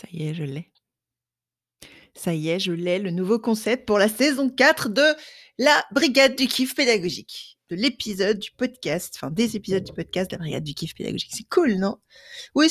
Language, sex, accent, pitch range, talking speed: French, female, French, 175-245 Hz, 200 wpm